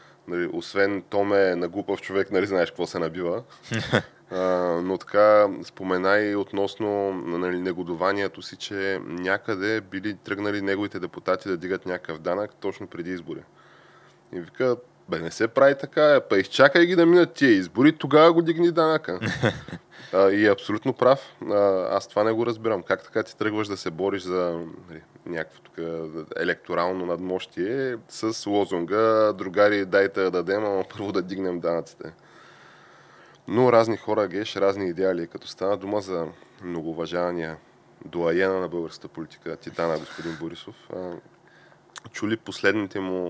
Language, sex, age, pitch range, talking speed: Bulgarian, male, 20-39, 90-105 Hz, 145 wpm